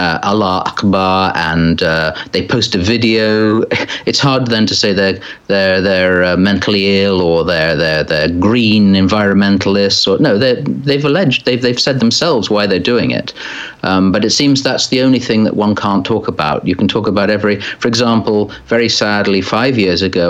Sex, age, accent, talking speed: male, 40-59, British, 190 wpm